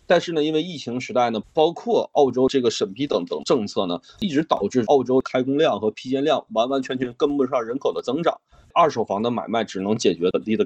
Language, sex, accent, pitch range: Chinese, male, native, 110-140 Hz